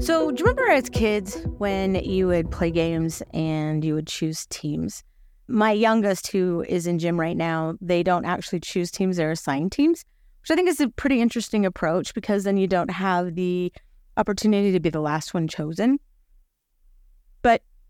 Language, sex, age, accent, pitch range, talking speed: English, female, 30-49, American, 170-240 Hz, 180 wpm